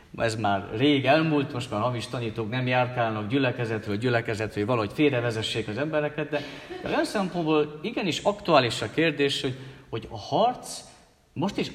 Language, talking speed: Hungarian, 150 wpm